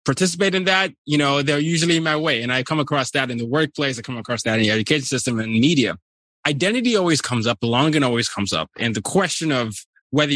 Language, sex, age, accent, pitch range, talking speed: English, male, 20-39, American, 115-145 Hz, 235 wpm